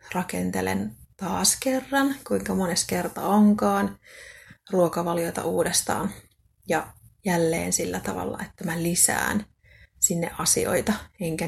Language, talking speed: Finnish, 100 wpm